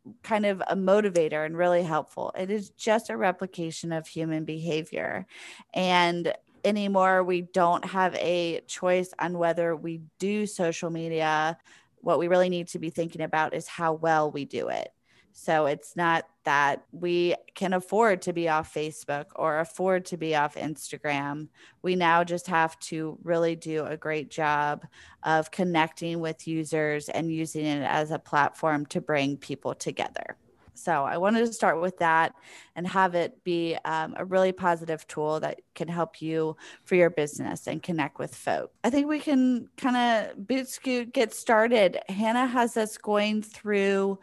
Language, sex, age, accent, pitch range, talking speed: English, female, 20-39, American, 160-205 Hz, 170 wpm